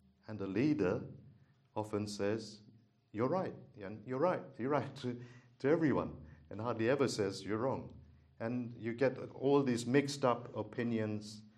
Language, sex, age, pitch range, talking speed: English, male, 50-69, 95-115 Hz, 145 wpm